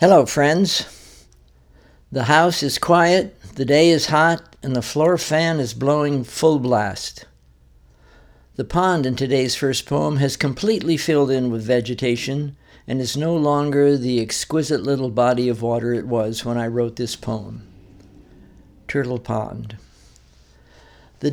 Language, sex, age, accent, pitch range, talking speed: English, male, 60-79, American, 115-140 Hz, 140 wpm